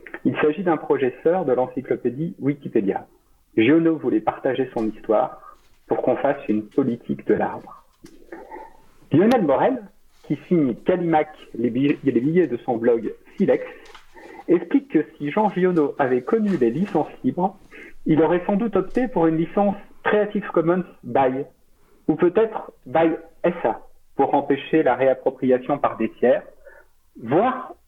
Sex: male